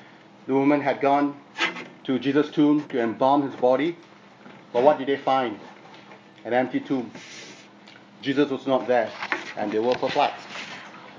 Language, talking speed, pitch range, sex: English, 145 wpm, 130-155 Hz, male